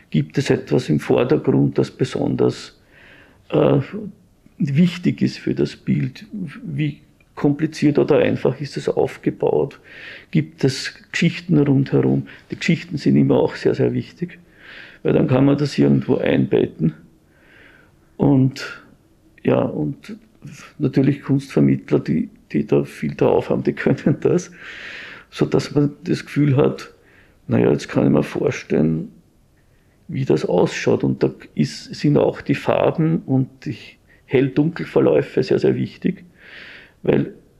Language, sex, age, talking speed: German, male, 50-69, 130 wpm